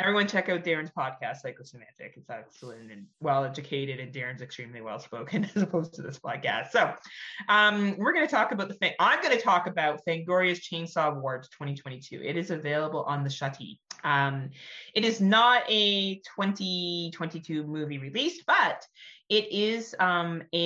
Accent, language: American, English